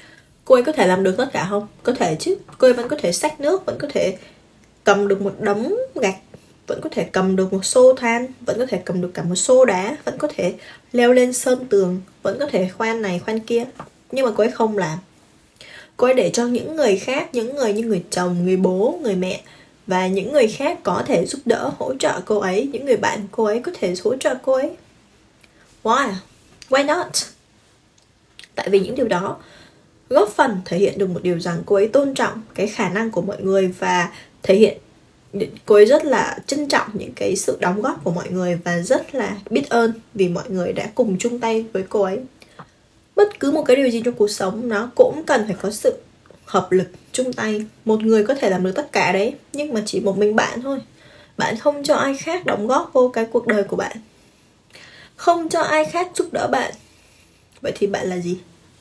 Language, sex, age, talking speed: Vietnamese, female, 20-39, 225 wpm